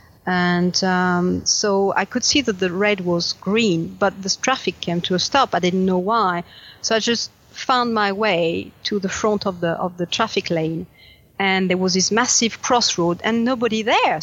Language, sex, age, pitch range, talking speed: English, female, 50-69, 180-240 Hz, 195 wpm